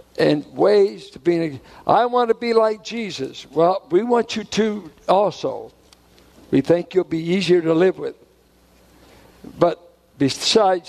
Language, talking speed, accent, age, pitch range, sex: English, 145 wpm, American, 60-79, 155-220 Hz, male